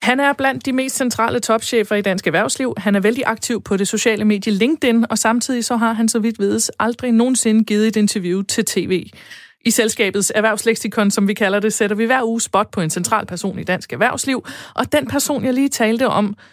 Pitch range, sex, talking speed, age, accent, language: 195-245 Hz, female, 220 wpm, 30-49, native, Danish